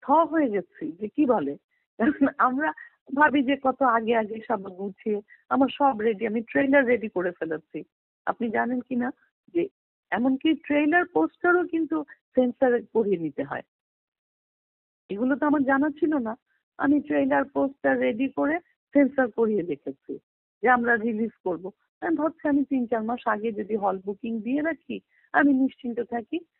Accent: native